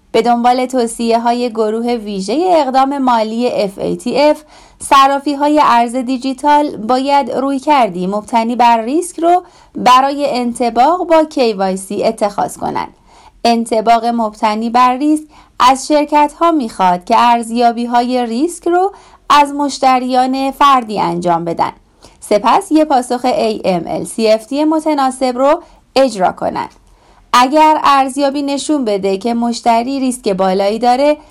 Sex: female